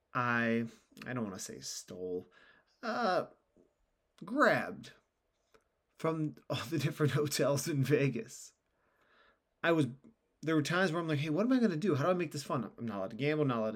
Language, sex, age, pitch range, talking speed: English, male, 30-49, 125-160 Hz, 190 wpm